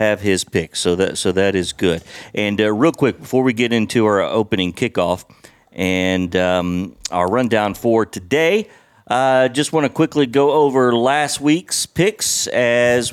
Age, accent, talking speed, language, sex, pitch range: 40-59, American, 175 wpm, English, male, 105-140 Hz